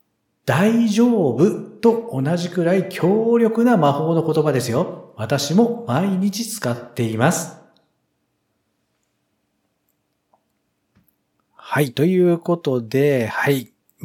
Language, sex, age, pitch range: Japanese, male, 50-69, 120-185 Hz